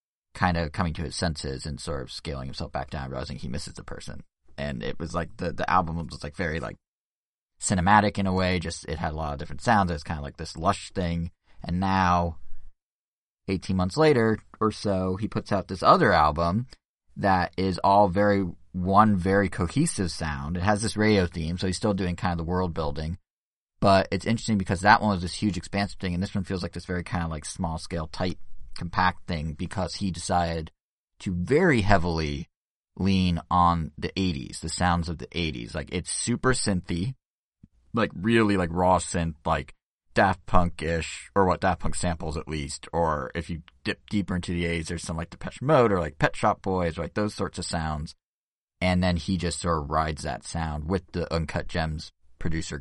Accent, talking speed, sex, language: American, 210 wpm, male, English